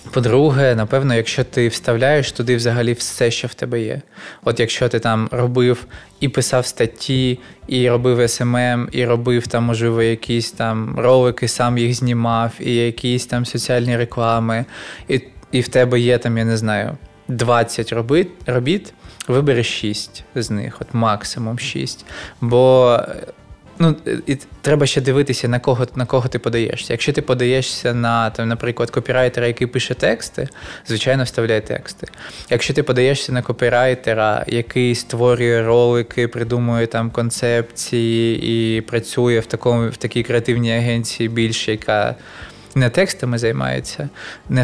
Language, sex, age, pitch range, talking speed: Ukrainian, male, 20-39, 115-125 Hz, 145 wpm